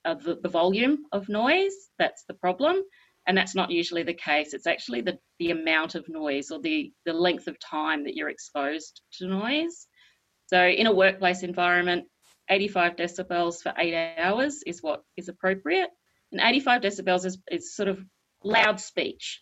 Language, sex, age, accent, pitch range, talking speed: English, female, 30-49, Australian, 165-215 Hz, 170 wpm